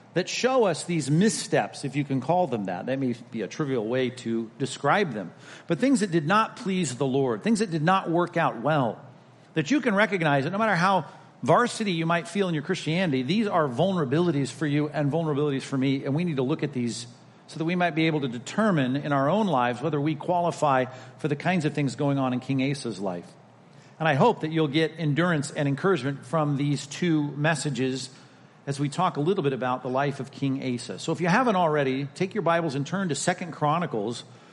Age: 50-69